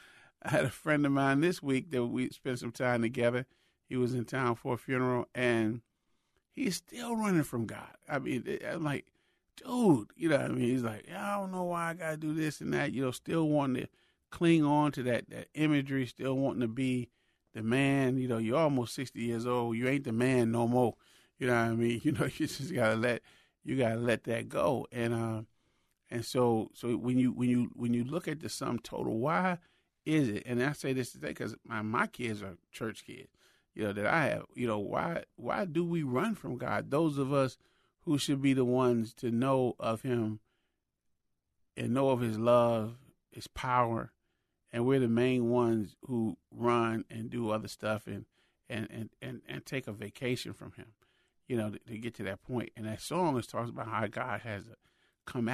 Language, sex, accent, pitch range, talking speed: English, male, American, 115-135 Hz, 215 wpm